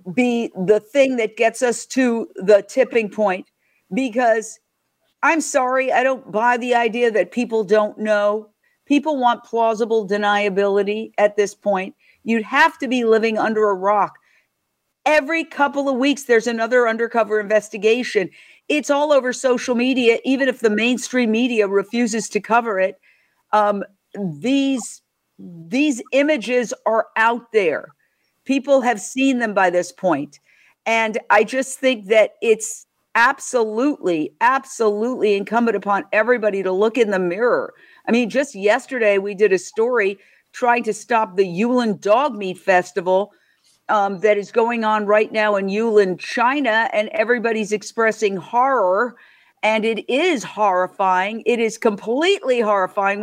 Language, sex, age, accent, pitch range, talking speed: English, female, 50-69, American, 205-255 Hz, 145 wpm